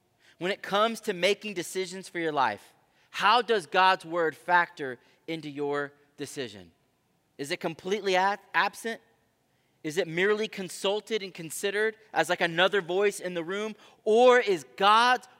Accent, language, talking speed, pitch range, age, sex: American, English, 145 wpm, 160-210 Hz, 30-49, male